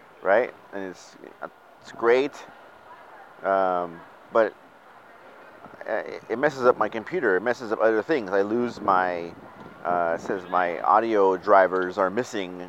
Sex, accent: male, American